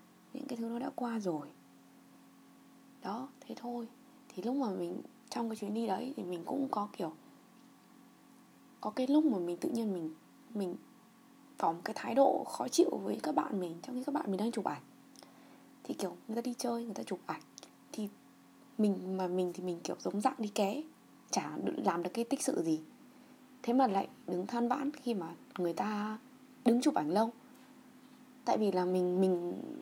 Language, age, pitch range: Vietnamese, 20-39, 195-265 Hz